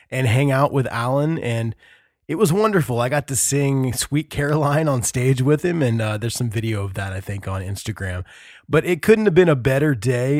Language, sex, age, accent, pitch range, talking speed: English, male, 20-39, American, 120-150 Hz, 220 wpm